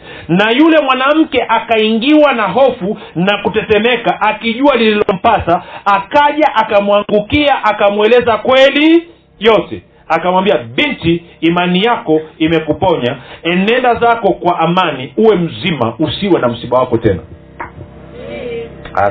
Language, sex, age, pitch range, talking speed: Swahili, male, 40-59, 170-245 Hz, 100 wpm